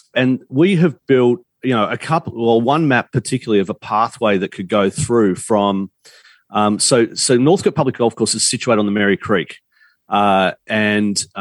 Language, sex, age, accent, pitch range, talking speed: English, male, 40-59, Australian, 105-130 Hz, 195 wpm